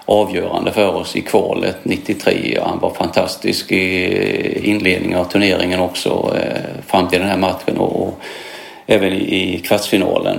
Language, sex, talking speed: English, male, 140 wpm